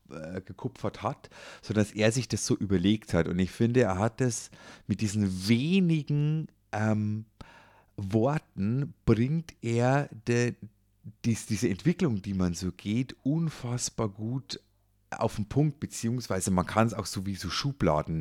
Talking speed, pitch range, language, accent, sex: 145 wpm, 90-115 Hz, German, German, male